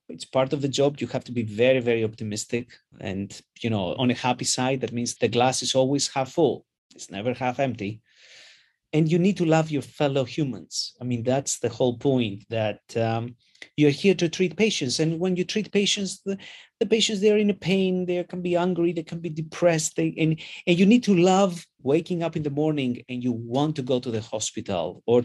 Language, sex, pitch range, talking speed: English, male, 120-160 Hz, 220 wpm